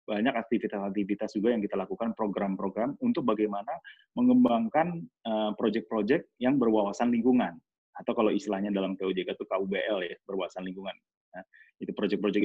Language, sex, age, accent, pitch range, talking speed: English, male, 30-49, Indonesian, 100-120 Hz, 135 wpm